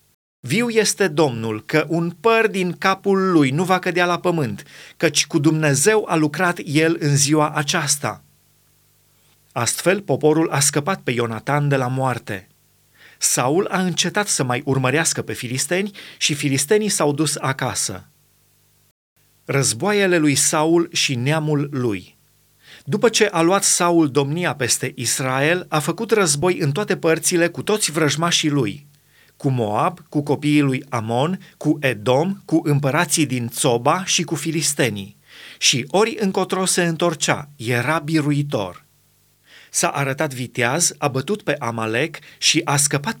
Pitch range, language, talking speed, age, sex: 135-170 Hz, Romanian, 140 wpm, 30-49, male